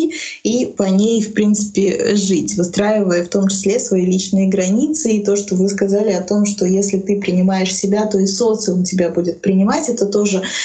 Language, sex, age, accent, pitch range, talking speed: Russian, female, 20-39, native, 185-215 Hz, 185 wpm